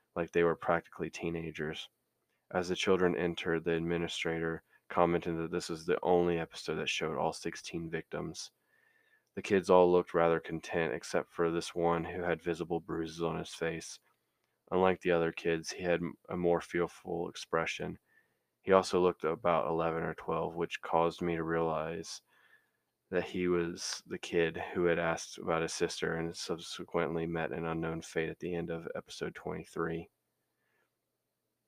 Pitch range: 80-85 Hz